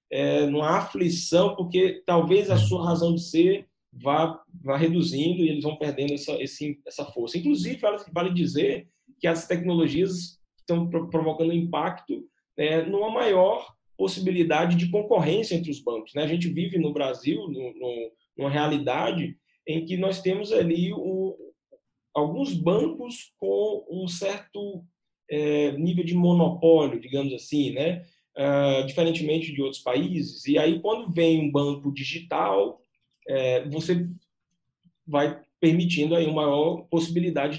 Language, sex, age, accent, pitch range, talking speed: Portuguese, male, 20-39, Brazilian, 145-175 Hz, 135 wpm